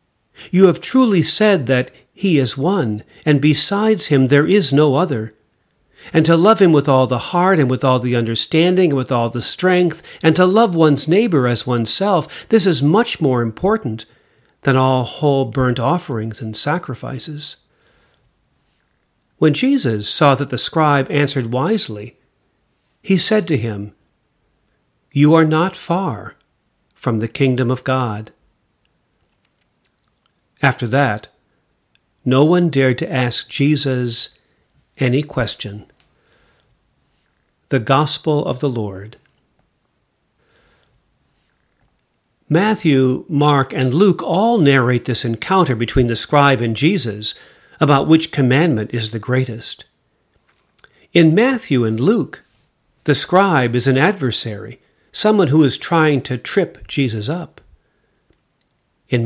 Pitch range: 125-165 Hz